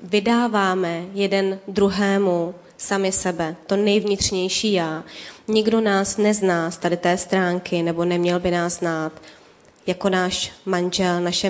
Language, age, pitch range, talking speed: Czech, 20-39, 180-200 Hz, 125 wpm